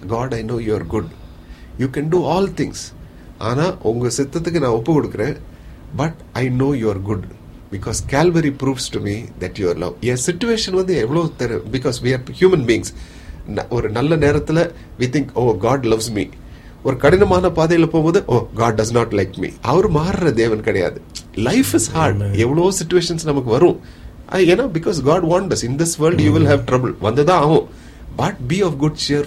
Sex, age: male, 30-49